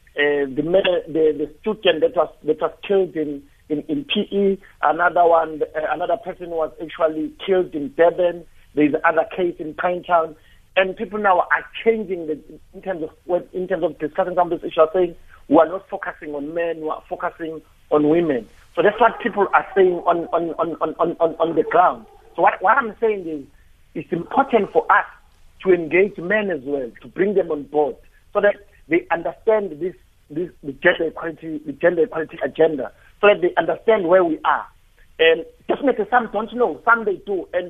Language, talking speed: English, 200 wpm